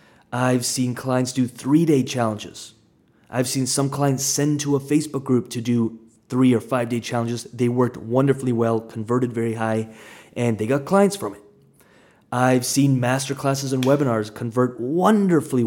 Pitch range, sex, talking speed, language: 115-140 Hz, male, 155 wpm, English